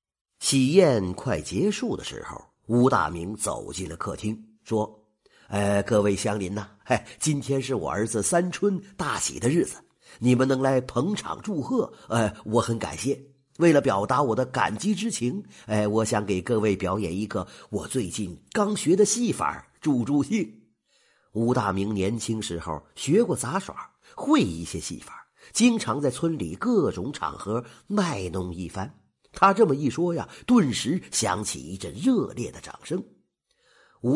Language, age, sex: Chinese, 50-69, male